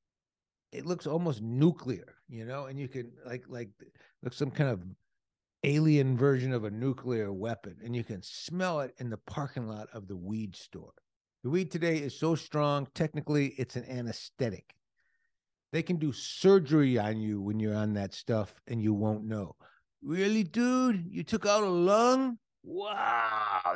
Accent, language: American, English